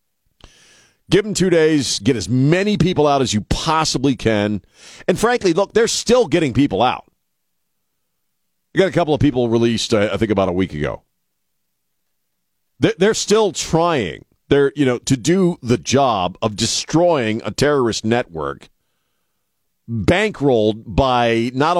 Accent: American